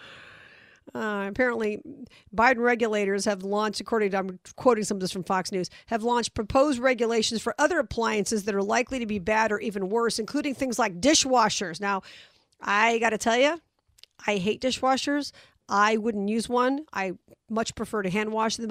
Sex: female